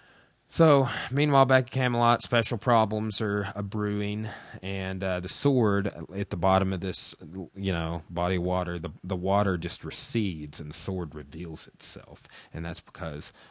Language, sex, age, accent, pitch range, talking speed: English, male, 30-49, American, 85-110 Hz, 160 wpm